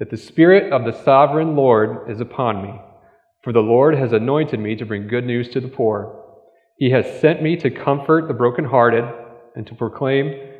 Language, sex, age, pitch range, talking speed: English, male, 40-59, 115-155 Hz, 190 wpm